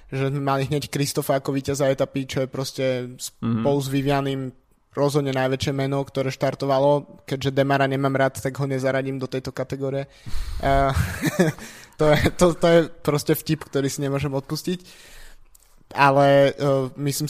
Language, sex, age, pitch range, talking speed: Slovak, male, 20-39, 130-140 Hz, 155 wpm